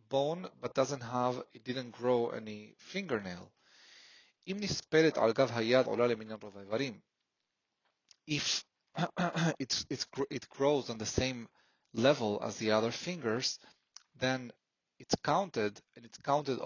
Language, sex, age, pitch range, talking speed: English, male, 30-49, 110-135 Hz, 95 wpm